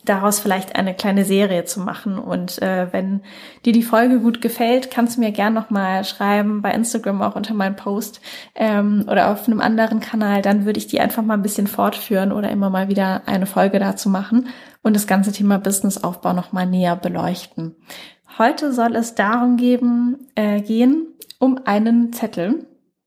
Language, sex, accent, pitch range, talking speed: German, female, German, 195-240 Hz, 180 wpm